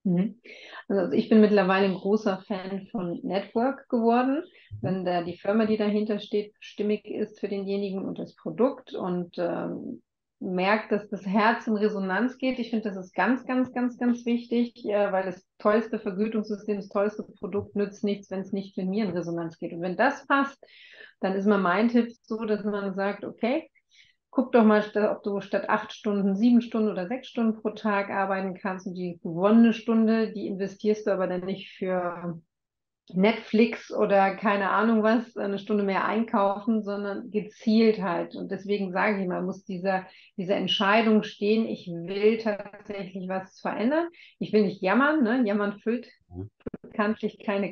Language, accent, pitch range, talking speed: German, German, 195-225 Hz, 175 wpm